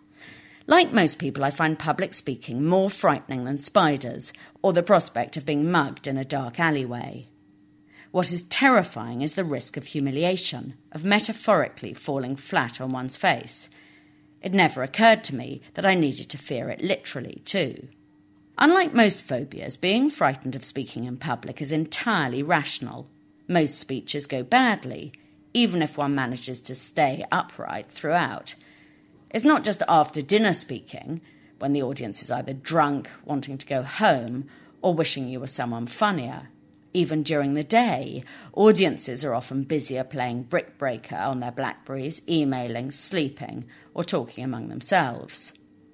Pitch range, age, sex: 130-180 Hz, 40-59, female